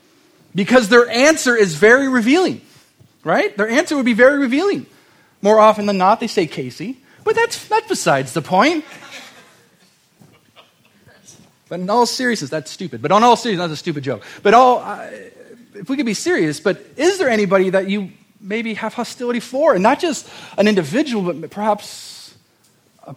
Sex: male